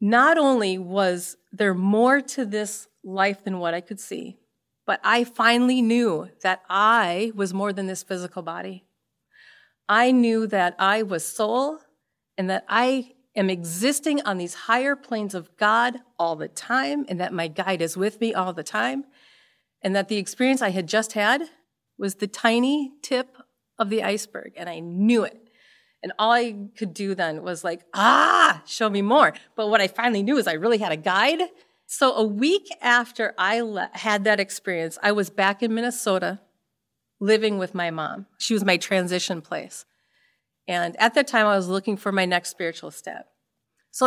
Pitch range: 190-240 Hz